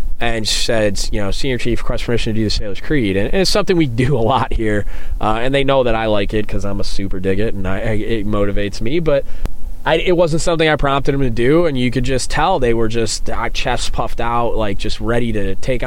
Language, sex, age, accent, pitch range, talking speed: English, male, 20-39, American, 105-130 Hz, 255 wpm